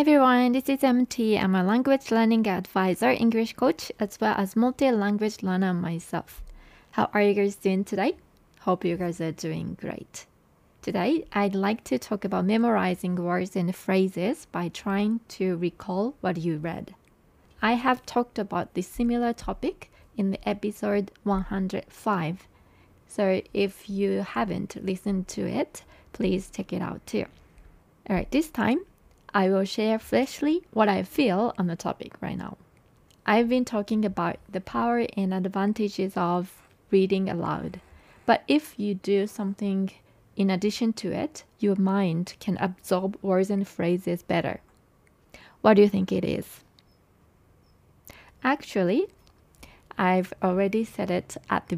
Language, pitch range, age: Japanese, 185-225 Hz, 20-39